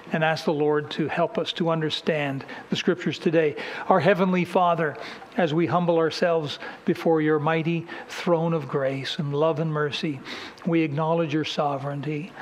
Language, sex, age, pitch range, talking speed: English, male, 60-79, 150-175 Hz, 160 wpm